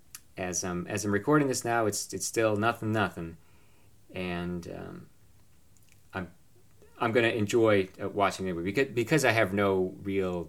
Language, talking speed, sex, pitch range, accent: English, 155 wpm, male, 90-110 Hz, American